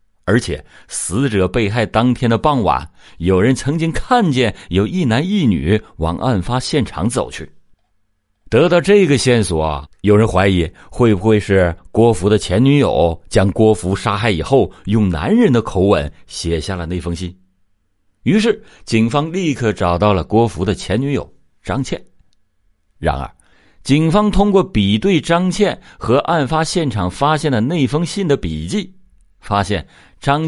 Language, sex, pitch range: Chinese, male, 90-145 Hz